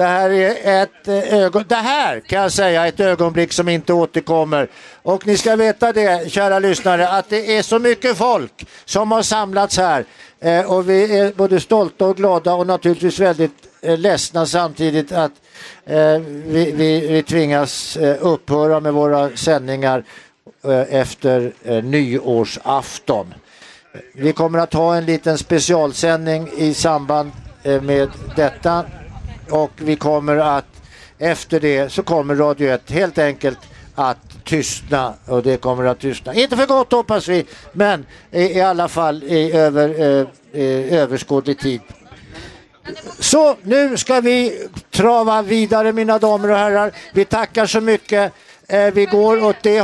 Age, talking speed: 60-79, 140 wpm